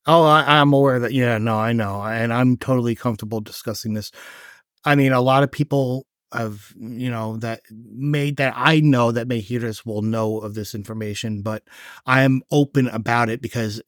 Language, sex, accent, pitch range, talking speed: English, male, American, 115-135 Hz, 190 wpm